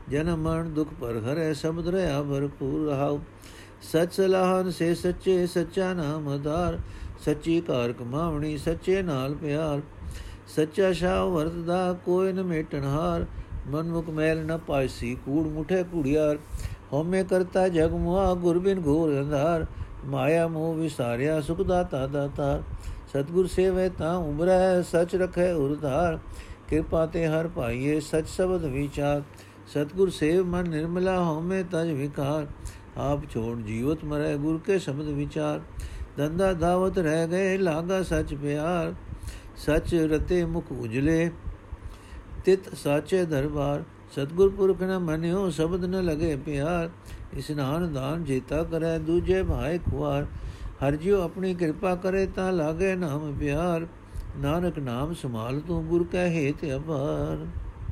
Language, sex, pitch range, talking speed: Punjabi, male, 140-175 Hz, 130 wpm